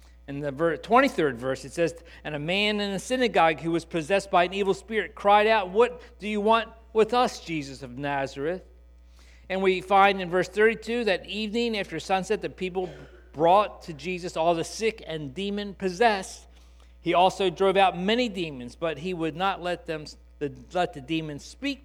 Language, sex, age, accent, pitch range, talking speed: English, male, 50-69, American, 140-205 Hz, 180 wpm